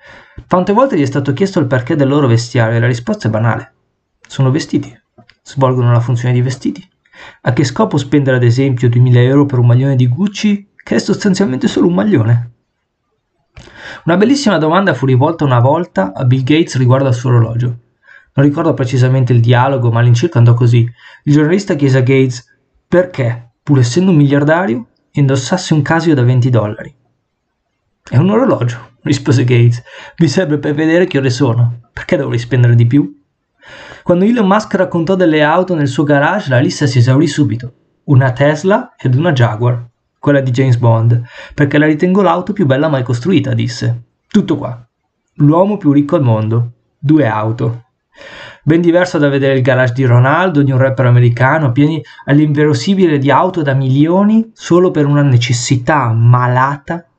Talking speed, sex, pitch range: 170 wpm, male, 120-160 Hz